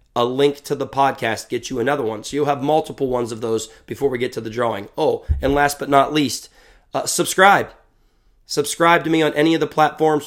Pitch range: 130-150 Hz